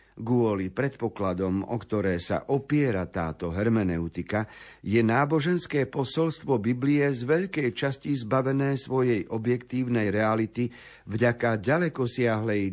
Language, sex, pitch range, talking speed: Slovak, male, 105-135 Hz, 100 wpm